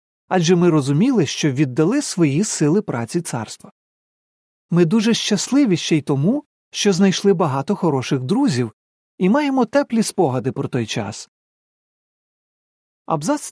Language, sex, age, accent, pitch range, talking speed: Ukrainian, male, 40-59, native, 145-205 Hz, 125 wpm